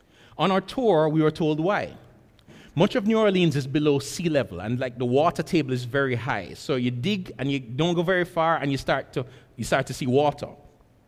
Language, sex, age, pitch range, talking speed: English, male, 30-49, 130-175 Hz, 220 wpm